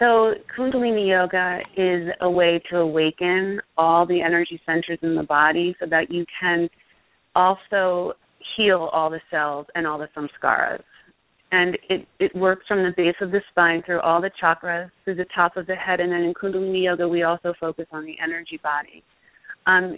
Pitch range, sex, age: 165-190 Hz, female, 30-49